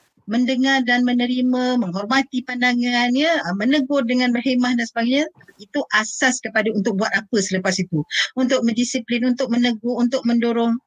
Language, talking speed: Malay, 135 wpm